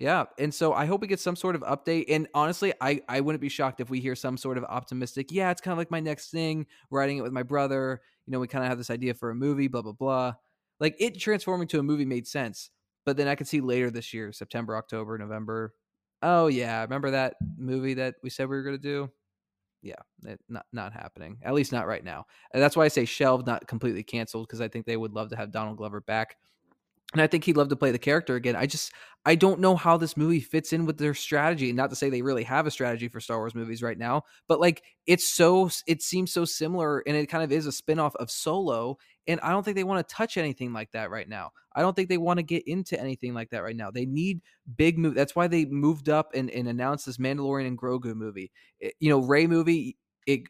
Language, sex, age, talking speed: English, male, 20-39, 260 wpm